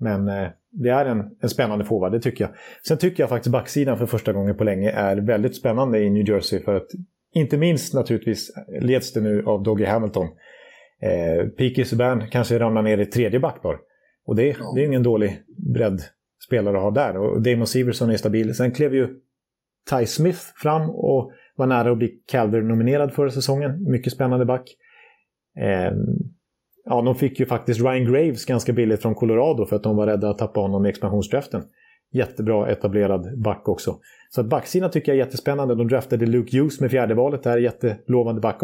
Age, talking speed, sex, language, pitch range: 30-49, 185 wpm, male, Swedish, 110-140 Hz